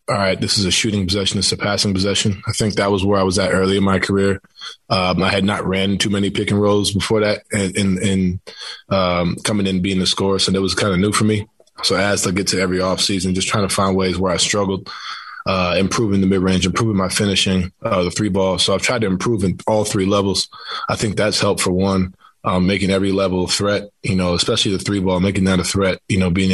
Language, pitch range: English, 90-100 Hz